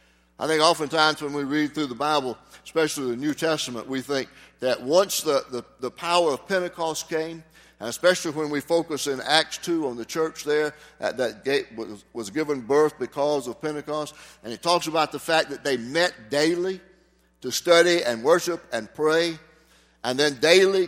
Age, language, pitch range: 60-79, English, 135-175 Hz